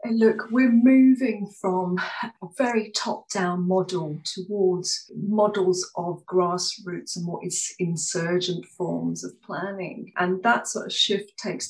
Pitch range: 170-195 Hz